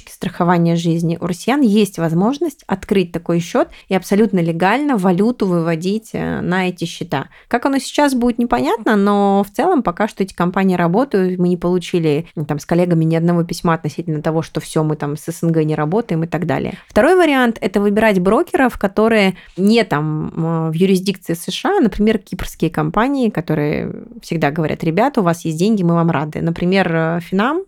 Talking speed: 175 wpm